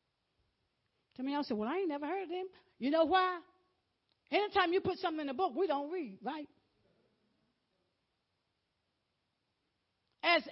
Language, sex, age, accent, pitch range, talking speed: English, female, 50-69, American, 290-400 Hz, 150 wpm